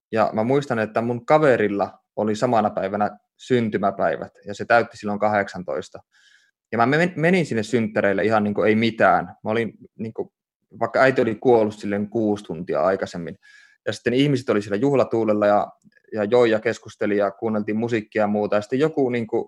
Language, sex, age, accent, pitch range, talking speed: Finnish, male, 20-39, native, 105-125 Hz, 175 wpm